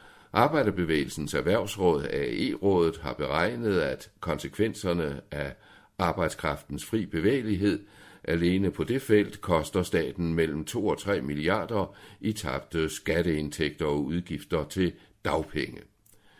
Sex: male